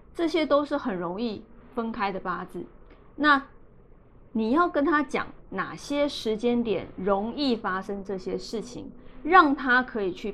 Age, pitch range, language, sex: 20-39, 205-270 Hz, Chinese, female